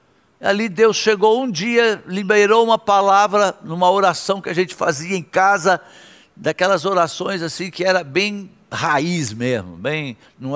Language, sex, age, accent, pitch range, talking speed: Portuguese, male, 60-79, Brazilian, 155-215 Hz, 140 wpm